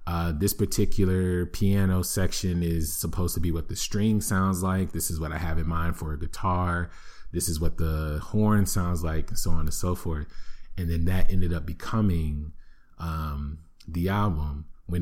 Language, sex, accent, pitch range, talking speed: English, male, American, 80-95 Hz, 190 wpm